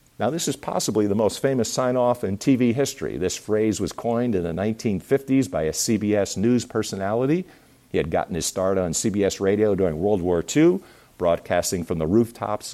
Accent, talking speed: American, 185 wpm